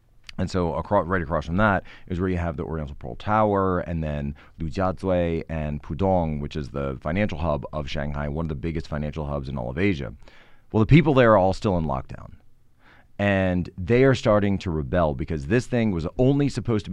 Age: 30-49